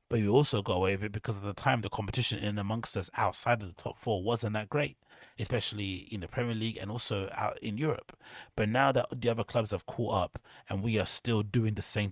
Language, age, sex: English, 30-49, male